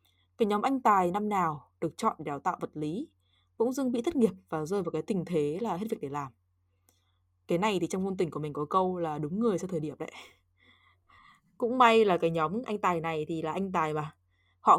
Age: 20-39